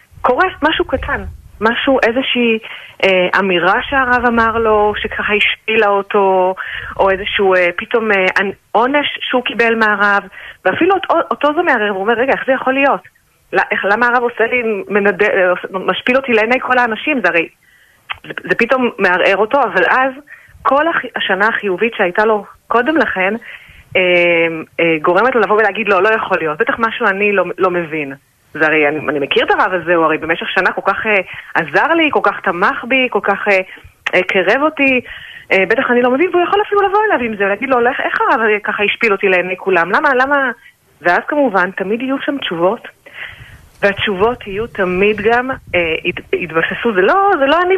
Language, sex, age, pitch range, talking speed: Hebrew, female, 30-49, 185-255 Hz, 180 wpm